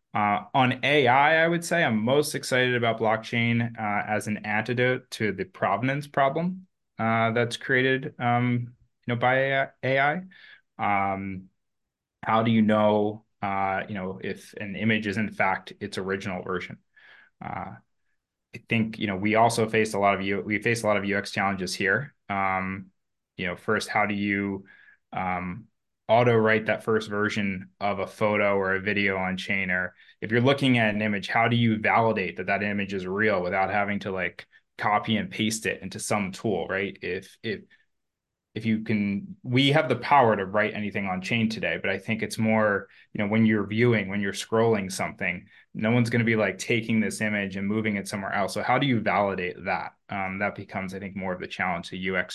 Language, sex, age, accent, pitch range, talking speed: English, male, 20-39, American, 100-120 Hz, 200 wpm